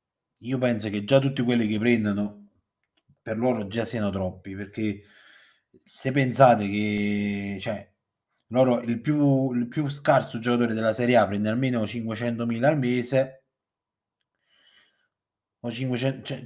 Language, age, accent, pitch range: Italian, 30-49, native, 105-135 Hz